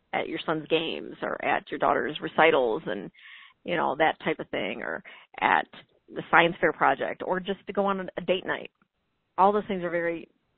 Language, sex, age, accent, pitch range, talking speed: English, female, 40-59, American, 165-195 Hz, 200 wpm